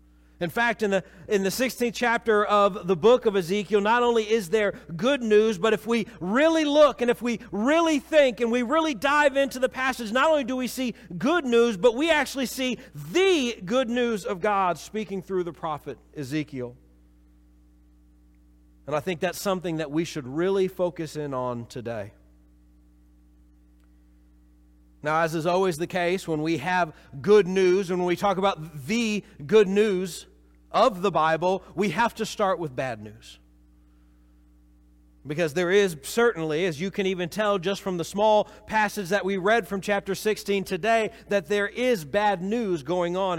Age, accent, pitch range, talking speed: 40-59, American, 135-225 Hz, 175 wpm